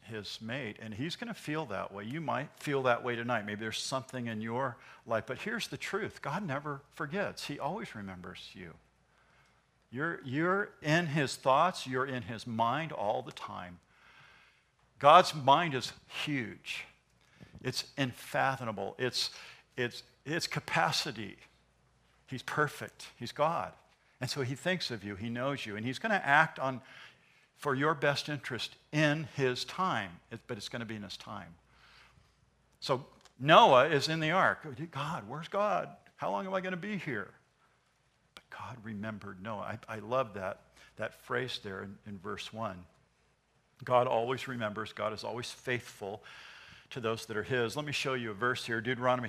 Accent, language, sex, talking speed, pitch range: American, English, male, 170 wpm, 110-150 Hz